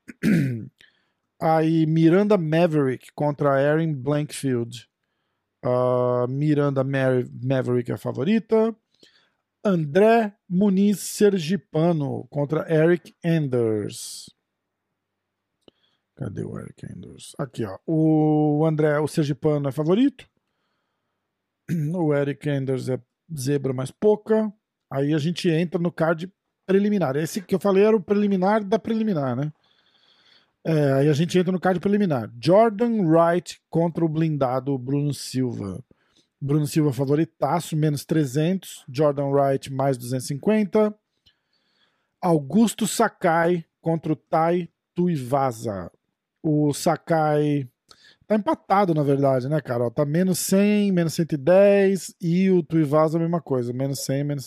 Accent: Brazilian